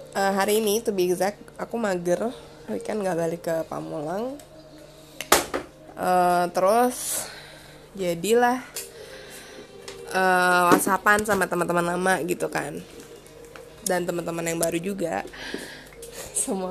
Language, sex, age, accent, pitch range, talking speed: English, female, 20-39, Indonesian, 180-230 Hz, 105 wpm